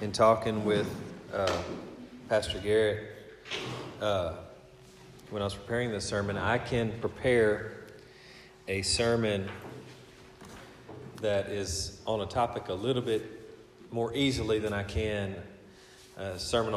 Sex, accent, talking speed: male, American, 120 wpm